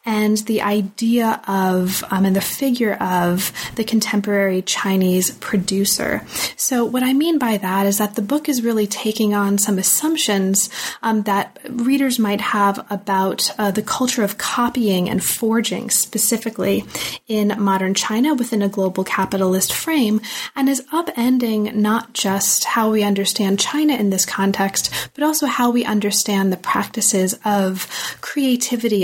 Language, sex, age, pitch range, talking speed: English, female, 30-49, 195-235 Hz, 150 wpm